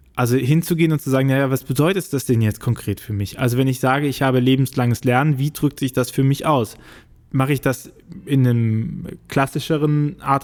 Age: 20-39